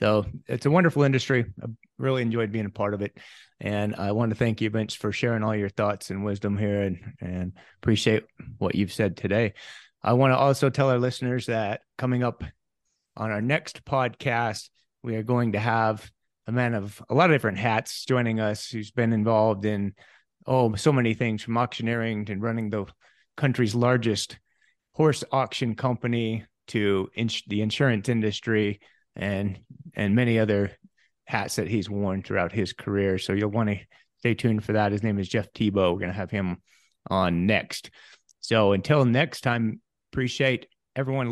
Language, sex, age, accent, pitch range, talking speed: English, male, 30-49, American, 100-125 Hz, 180 wpm